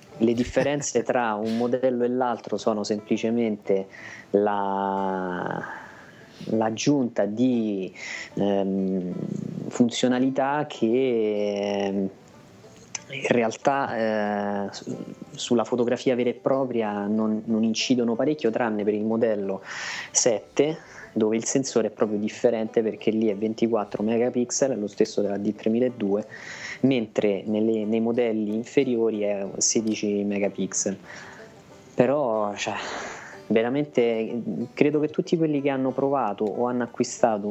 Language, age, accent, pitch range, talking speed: Italian, 20-39, native, 105-125 Hz, 105 wpm